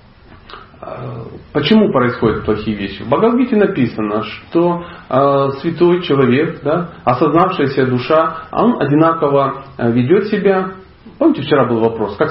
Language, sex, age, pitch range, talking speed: Russian, male, 40-59, 115-175 Hz, 110 wpm